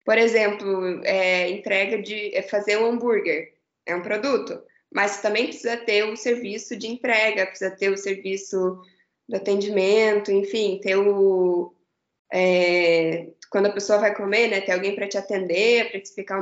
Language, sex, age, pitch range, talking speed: Portuguese, female, 10-29, 195-235 Hz, 170 wpm